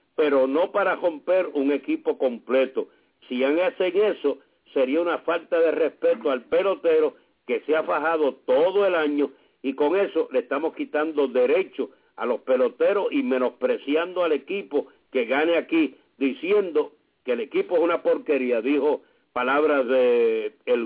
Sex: male